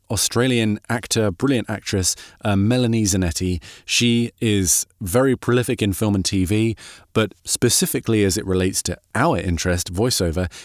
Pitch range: 90-115 Hz